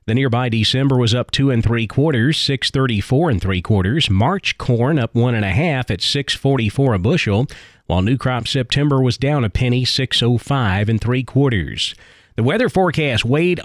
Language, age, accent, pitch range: English, 40-59, American, 120-150 Hz